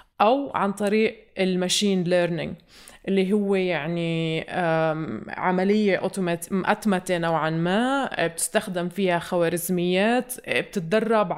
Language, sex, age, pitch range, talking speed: Arabic, female, 20-39, 180-220 Hz, 85 wpm